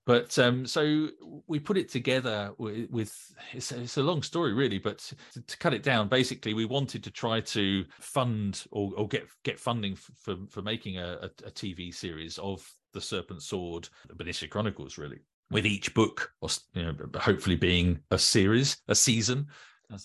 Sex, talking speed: male, 185 wpm